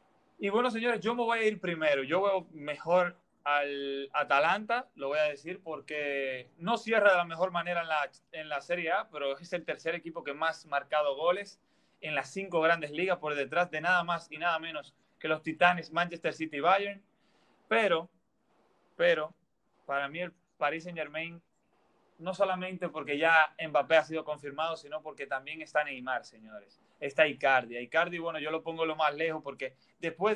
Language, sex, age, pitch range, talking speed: Spanish, male, 30-49, 150-185 Hz, 185 wpm